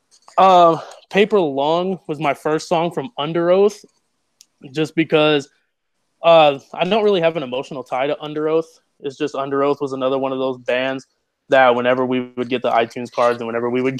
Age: 20-39